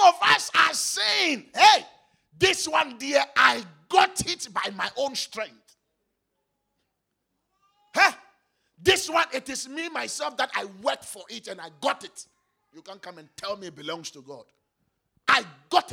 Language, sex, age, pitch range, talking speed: English, male, 50-69, 185-275 Hz, 160 wpm